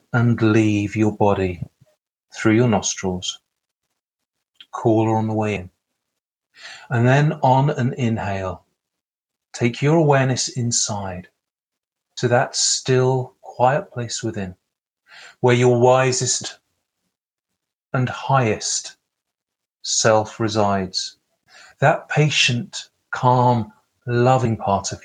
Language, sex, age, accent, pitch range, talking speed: English, male, 30-49, British, 110-130 Hz, 95 wpm